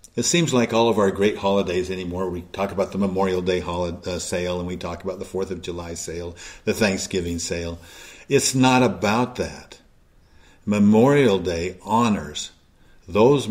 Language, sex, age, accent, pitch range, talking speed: English, male, 50-69, American, 85-110 Hz, 160 wpm